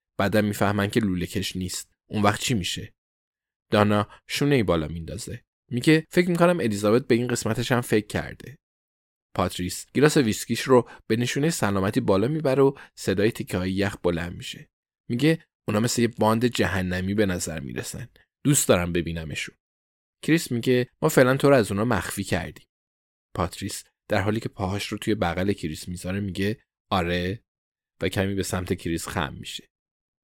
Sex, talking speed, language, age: male, 165 wpm, Persian, 20-39